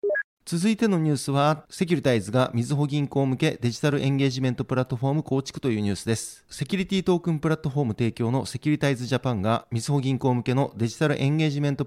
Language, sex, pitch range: Japanese, male, 120-145 Hz